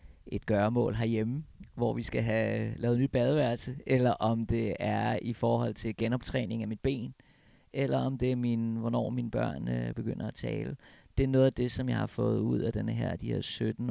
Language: Danish